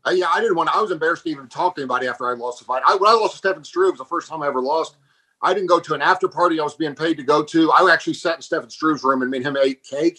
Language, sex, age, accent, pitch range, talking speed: English, male, 40-59, American, 135-185 Hz, 355 wpm